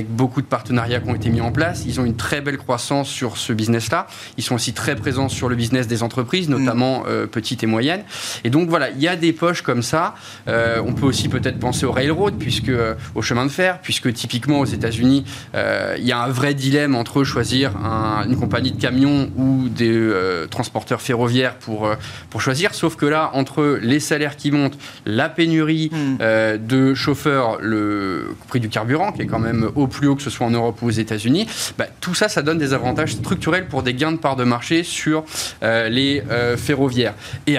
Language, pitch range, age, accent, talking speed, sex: French, 120-145 Hz, 20-39, French, 215 wpm, male